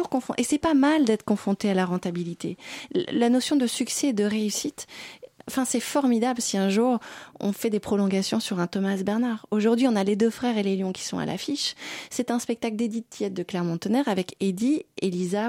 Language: French